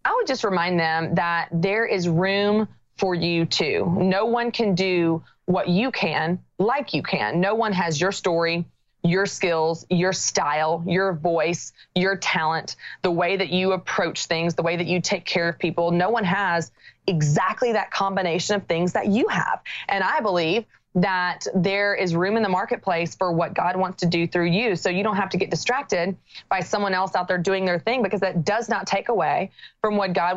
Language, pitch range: English, 175-200 Hz